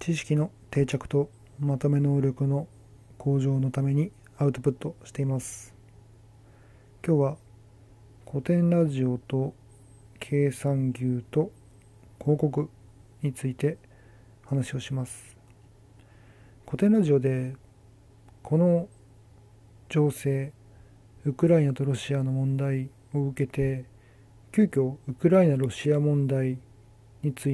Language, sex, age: Japanese, male, 40-59